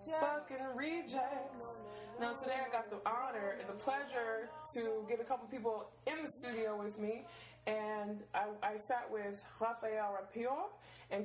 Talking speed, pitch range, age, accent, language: 155 wpm, 195-235 Hz, 20-39, American, English